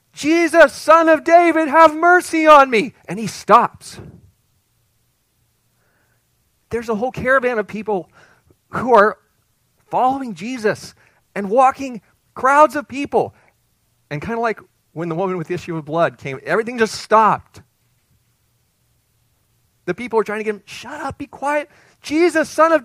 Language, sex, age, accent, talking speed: English, male, 40-59, American, 145 wpm